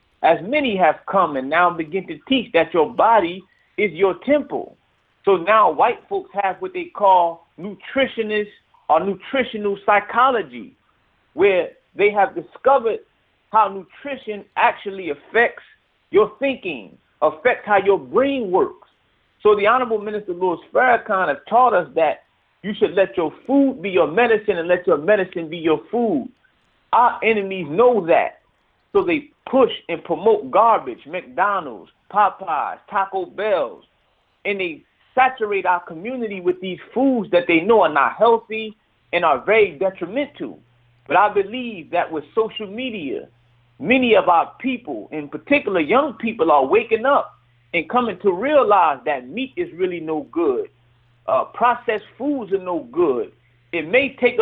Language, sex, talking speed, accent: English, male, 150 wpm, American